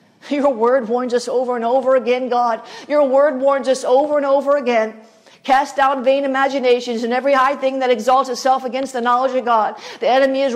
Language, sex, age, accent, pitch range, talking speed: English, female, 50-69, American, 245-285 Hz, 205 wpm